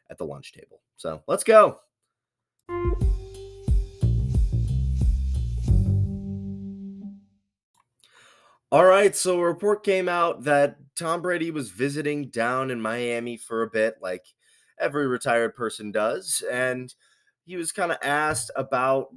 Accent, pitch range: American, 105-150 Hz